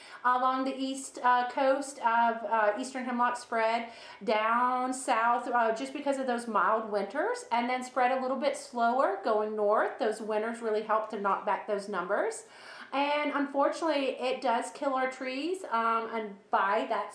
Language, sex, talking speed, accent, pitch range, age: English, female, 170 wpm, American, 205-250 Hz, 30-49